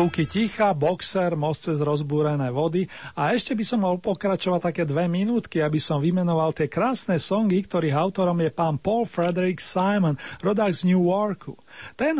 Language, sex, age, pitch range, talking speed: Slovak, male, 40-59, 165-205 Hz, 165 wpm